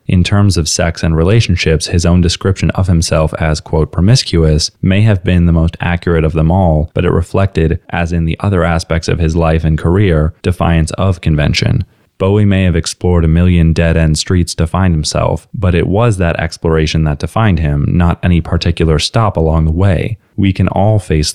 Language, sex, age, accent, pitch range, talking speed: English, male, 20-39, American, 80-95 Hz, 195 wpm